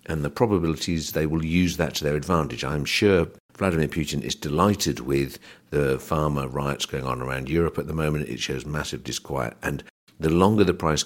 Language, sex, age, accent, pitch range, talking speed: English, male, 50-69, British, 65-90 Hz, 195 wpm